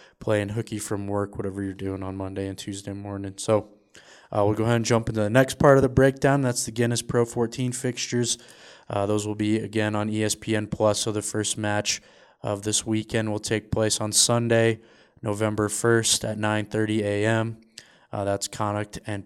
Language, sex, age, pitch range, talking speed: English, male, 20-39, 105-115 Hz, 190 wpm